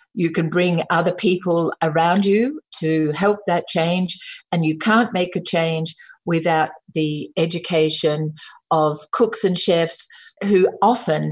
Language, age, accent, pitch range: English, 50-69, Australian, 160-195 Hz